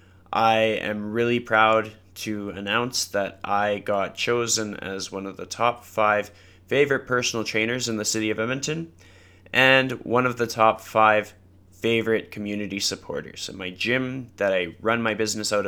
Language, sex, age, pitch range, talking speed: English, male, 20-39, 95-115 Hz, 160 wpm